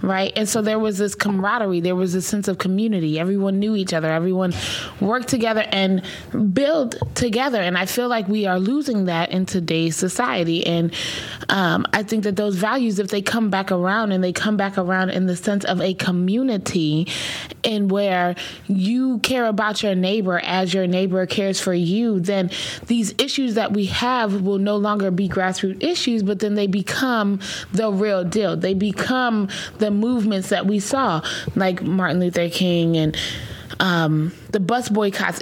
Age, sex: 20-39, female